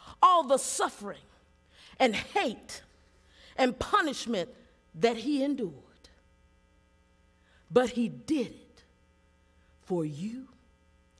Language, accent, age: English, American, 50-69